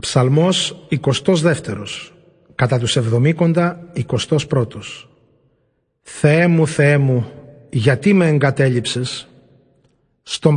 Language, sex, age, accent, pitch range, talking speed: Greek, male, 40-59, native, 135-175 Hz, 75 wpm